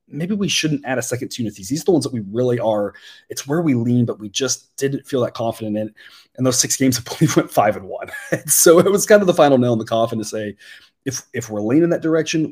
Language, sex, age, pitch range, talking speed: English, male, 30-49, 110-145 Hz, 290 wpm